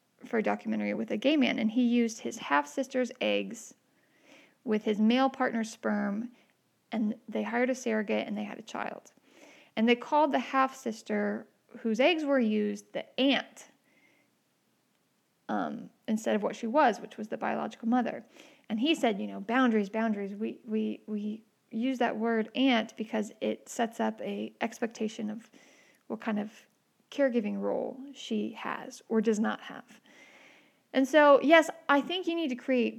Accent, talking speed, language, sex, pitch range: American, 165 wpm, English, female, 220-275 Hz